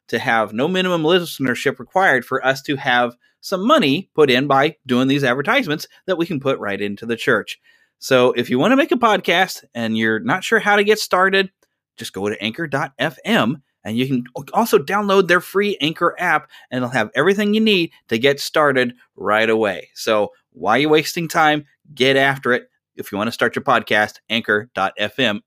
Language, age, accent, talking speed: English, 30-49, American, 195 wpm